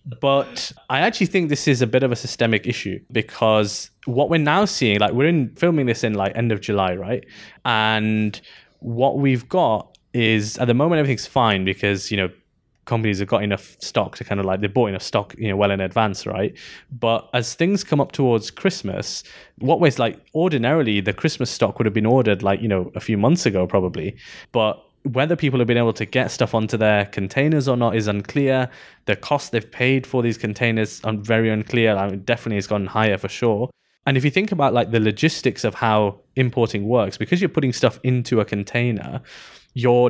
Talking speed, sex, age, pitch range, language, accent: 210 wpm, male, 20-39, 105-135 Hz, English, British